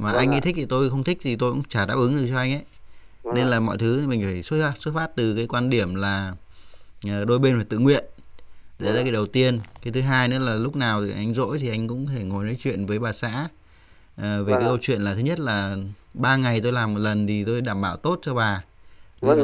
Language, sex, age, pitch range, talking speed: English, male, 20-39, 100-130 Hz, 260 wpm